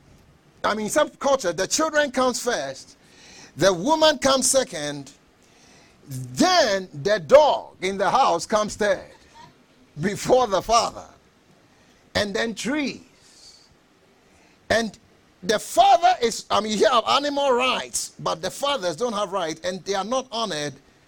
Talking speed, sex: 135 wpm, male